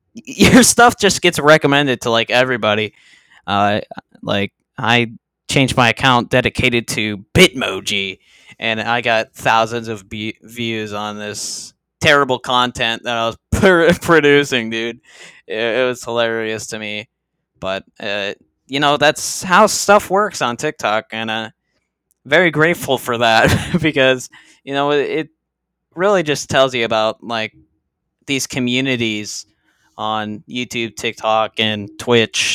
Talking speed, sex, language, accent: 130 wpm, male, English, American